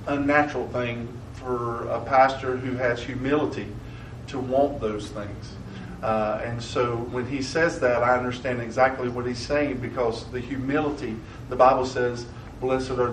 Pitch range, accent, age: 120-150 Hz, American, 40-59